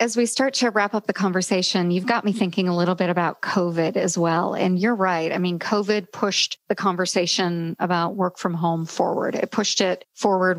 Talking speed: 210 wpm